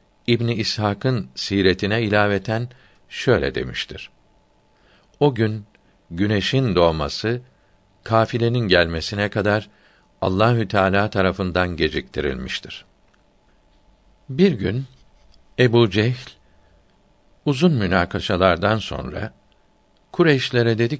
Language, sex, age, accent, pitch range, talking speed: Turkish, male, 60-79, native, 95-125 Hz, 75 wpm